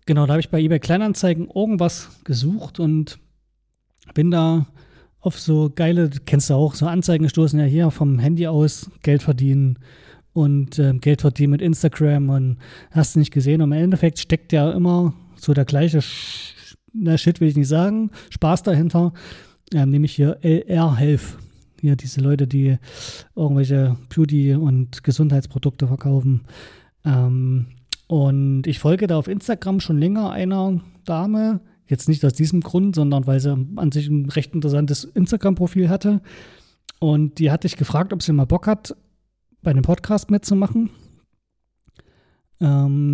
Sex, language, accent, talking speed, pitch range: male, German, German, 165 wpm, 140-175 Hz